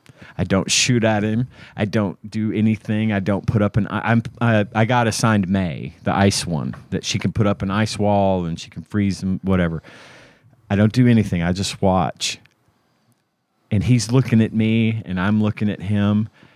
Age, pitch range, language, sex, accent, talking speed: 40-59, 100-120 Hz, English, male, American, 200 wpm